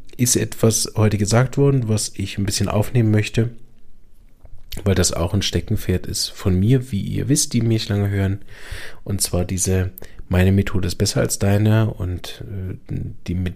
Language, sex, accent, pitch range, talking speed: German, male, German, 95-115 Hz, 165 wpm